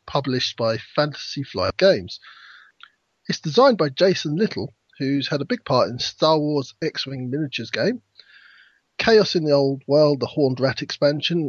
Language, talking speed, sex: English, 155 wpm, male